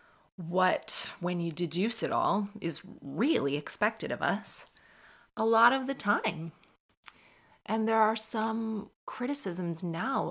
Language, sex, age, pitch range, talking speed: English, female, 30-49, 170-225 Hz, 130 wpm